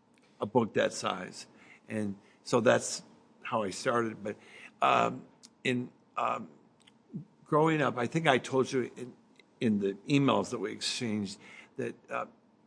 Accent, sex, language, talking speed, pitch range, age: American, male, English, 140 wpm, 110-130 Hz, 60-79